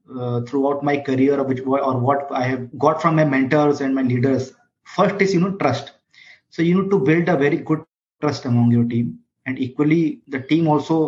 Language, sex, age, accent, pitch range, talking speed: English, male, 30-49, Indian, 135-160 Hz, 210 wpm